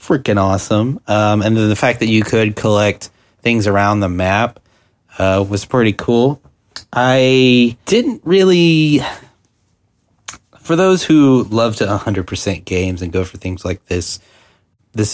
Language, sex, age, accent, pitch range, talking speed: English, male, 30-49, American, 95-115 Hz, 145 wpm